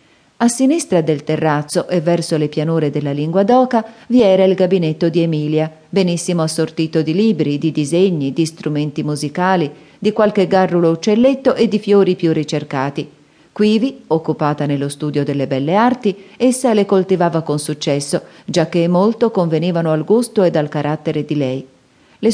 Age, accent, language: 40-59, native, Italian